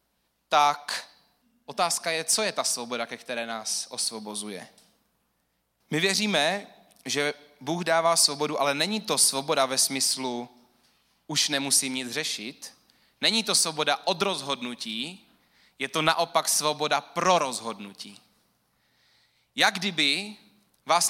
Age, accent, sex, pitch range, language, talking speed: 20-39, native, male, 145-195 Hz, Czech, 115 wpm